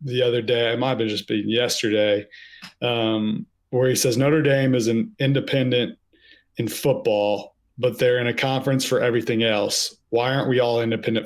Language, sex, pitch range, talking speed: English, male, 110-135 Hz, 175 wpm